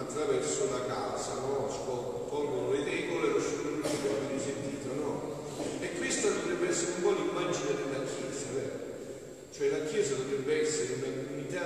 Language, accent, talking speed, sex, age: Italian, native, 150 wpm, male, 40-59